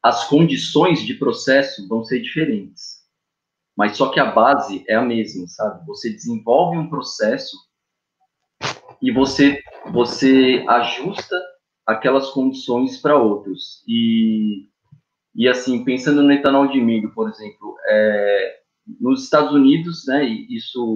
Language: Portuguese